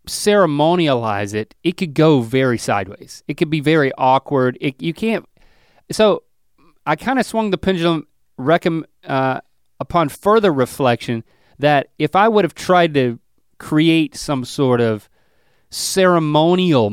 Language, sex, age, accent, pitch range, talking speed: English, male, 30-49, American, 120-165 Hz, 125 wpm